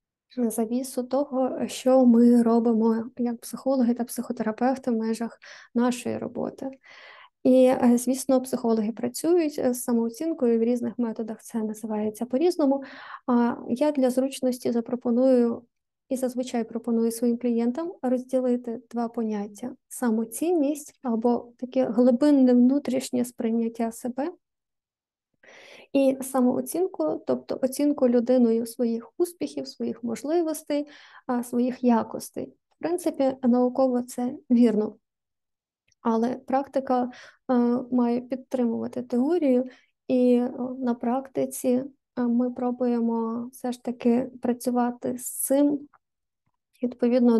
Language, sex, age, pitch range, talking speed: Ukrainian, female, 20-39, 235-260 Hz, 100 wpm